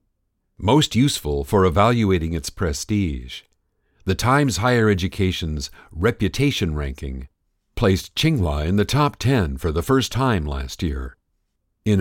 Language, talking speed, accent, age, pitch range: English, 125 wpm, American, 50-69, 80-110 Hz